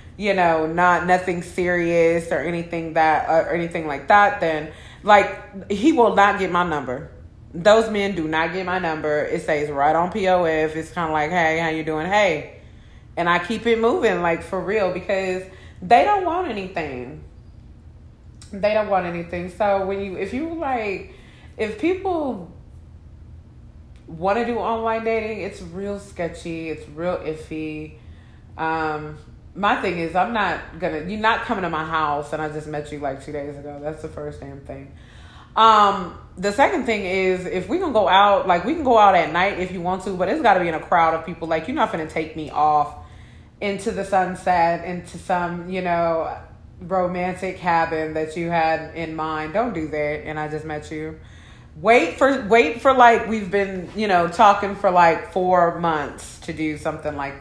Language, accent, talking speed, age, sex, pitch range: English, American, 190 wpm, 20-39, female, 155-200 Hz